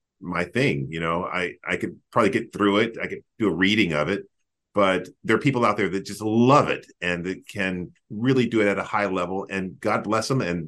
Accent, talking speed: American, 240 wpm